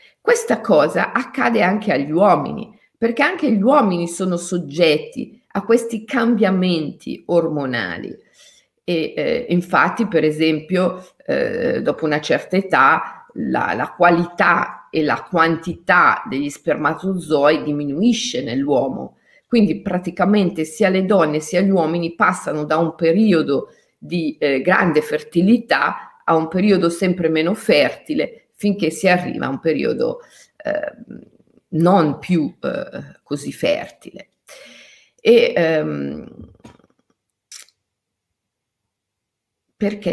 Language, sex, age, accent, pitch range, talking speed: Italian, female, 50-69, native, 150-205 Hz, 110 wpm